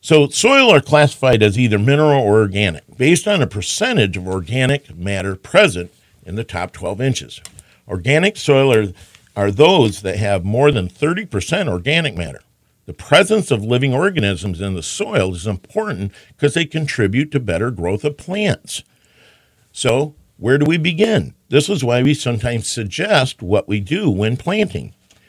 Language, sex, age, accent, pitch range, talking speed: English, male, 50-69, American, 100-145 Hz, 160 wpm